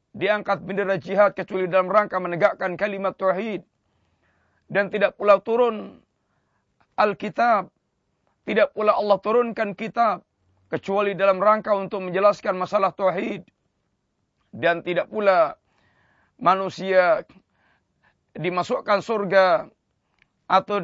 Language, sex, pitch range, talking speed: Malay, male, 180-215 Hz, 95 wpm